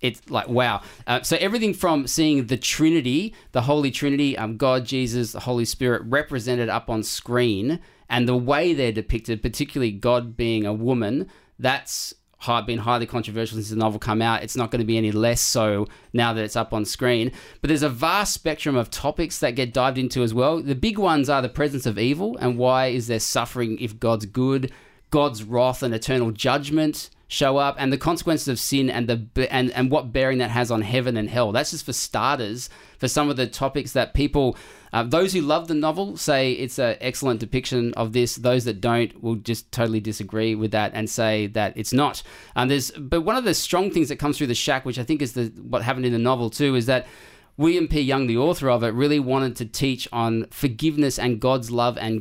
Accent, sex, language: Australian, male, English